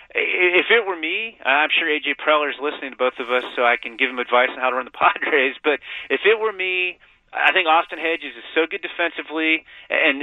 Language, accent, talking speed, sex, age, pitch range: English, American, 235 wpm, male, 30-49, 130-170 Hz